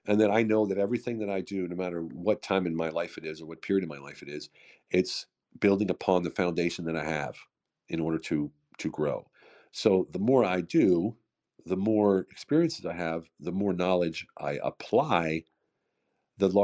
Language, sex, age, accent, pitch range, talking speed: English, male, 50-69, American, 80-100 Hz, 200 wpm